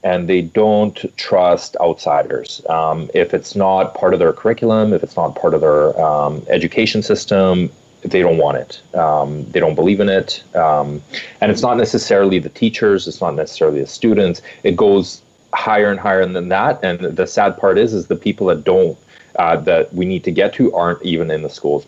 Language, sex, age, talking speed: English, male, 30-49, 200 wpm